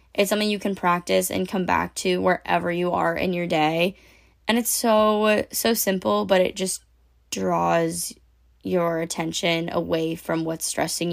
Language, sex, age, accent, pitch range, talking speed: English, female, 10-29, American, 160-195 Hz, 160 wpm